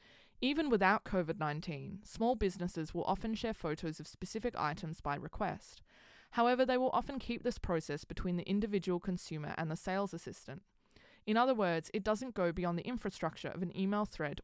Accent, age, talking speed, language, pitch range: Australian, 20-39, 175 wpm, English, 165-220 Hz